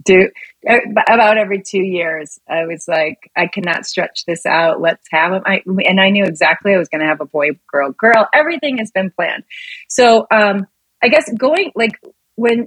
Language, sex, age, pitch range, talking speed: English, female, 30-49, 175-210 Hz, 190 wpm